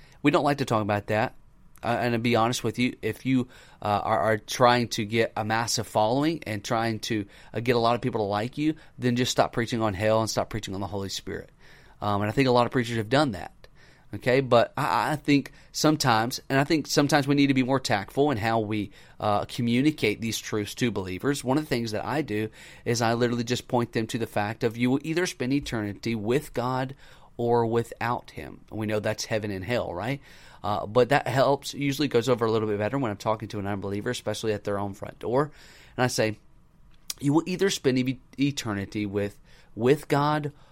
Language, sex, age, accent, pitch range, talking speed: English, male, 30-49, American, 110-135 Hz, 230 wpm